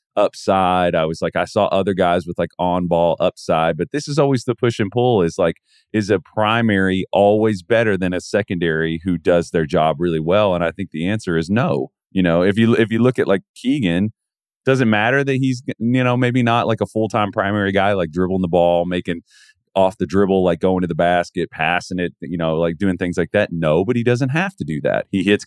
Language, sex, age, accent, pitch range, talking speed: English, male, 30-49, American, 85-115 Hz, 240 wpm